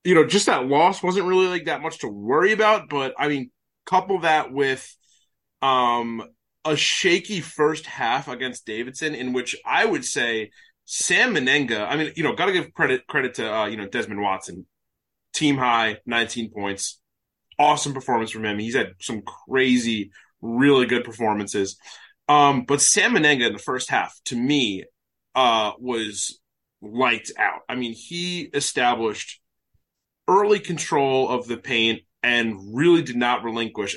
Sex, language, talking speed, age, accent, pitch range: male, English, 160 wpm, 20-39, American, 115-155 Hz